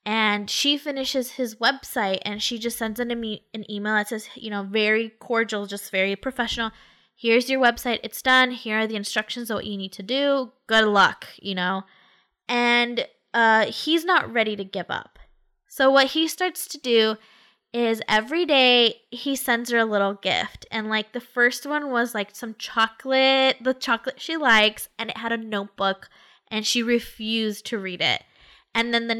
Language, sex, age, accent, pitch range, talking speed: English, female, 10-29, American, 210-260 Hz, 185 wpm